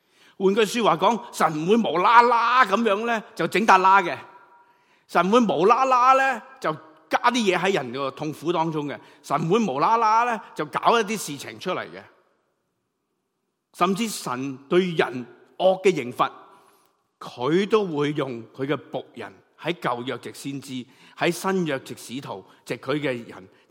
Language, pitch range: Chinese, 125-185 Hz